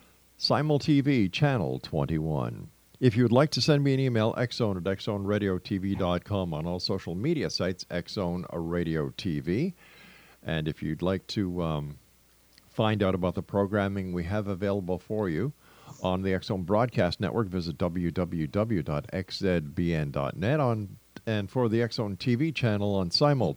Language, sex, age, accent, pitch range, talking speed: English, male, 50-69, American, 90-120 Hz, 145 wpm